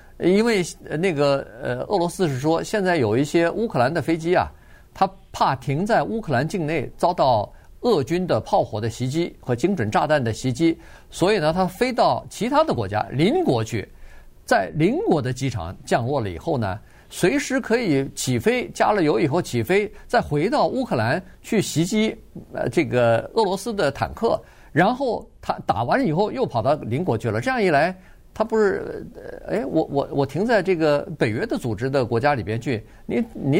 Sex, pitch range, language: male, 115-175 Hz, Chinese